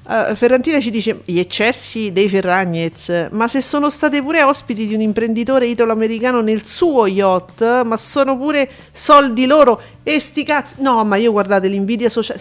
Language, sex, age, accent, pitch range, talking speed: Italian, female, 40-59, native, 210-270 Hz, 170 wpm